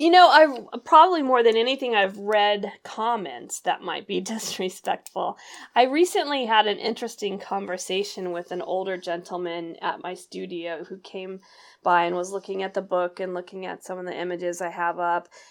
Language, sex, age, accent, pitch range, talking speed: English, female, 20-39, American, 180-225 Hz, 180 wpm